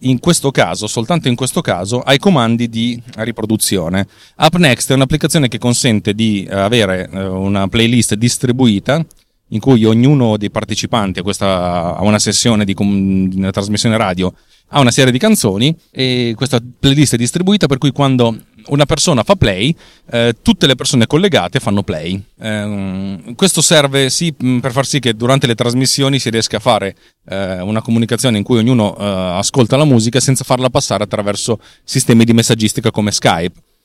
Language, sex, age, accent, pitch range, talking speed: Italian, male, 30-49, native, 105-135 Hz, 160 wpm